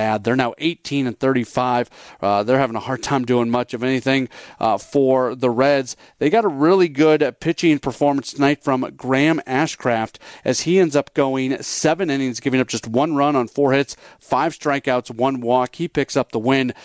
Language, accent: English, American